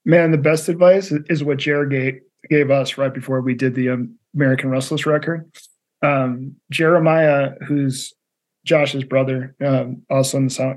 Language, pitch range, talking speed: English, 130-155 Hz, 150 wpm